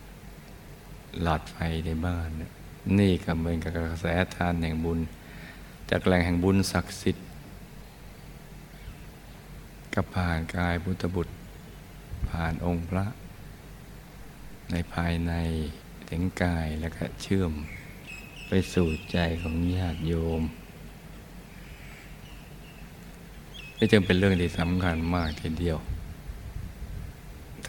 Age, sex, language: 60-79, male, Thai